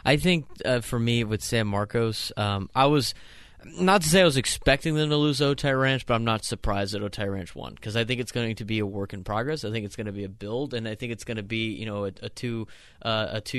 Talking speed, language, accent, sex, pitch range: 275 wpm, English, American, male, 105-125 Hz